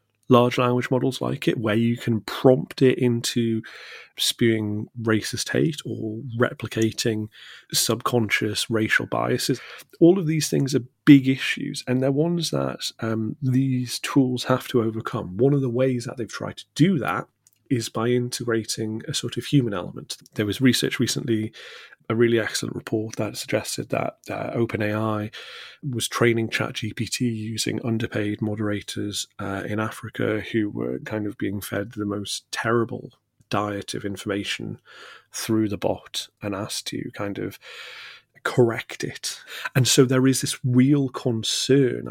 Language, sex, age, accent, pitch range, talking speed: English, male, 30-49, British, 110-130 Hz, 150 wpm